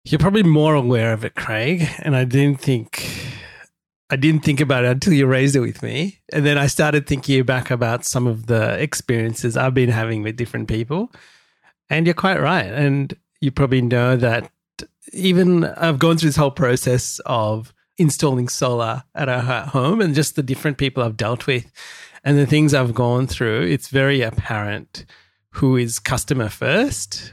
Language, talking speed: English, 175 wpm